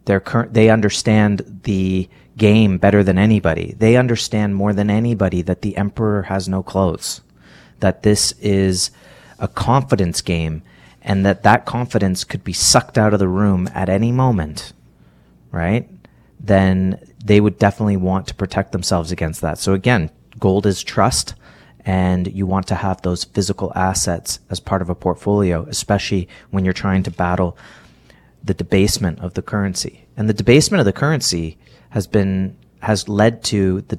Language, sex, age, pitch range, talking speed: English, male, 30-49, 90-110 Hz, 160 wpm